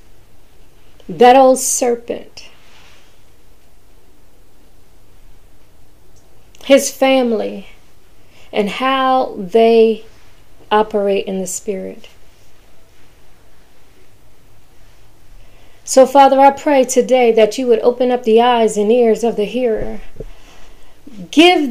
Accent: American